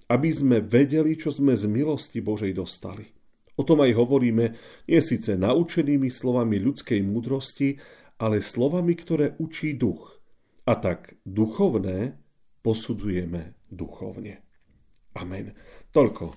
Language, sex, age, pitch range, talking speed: Slovak, male, 40-59, 105-130 Hz, 115 wpm